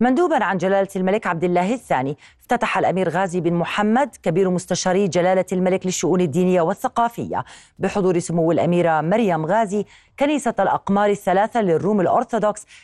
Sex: female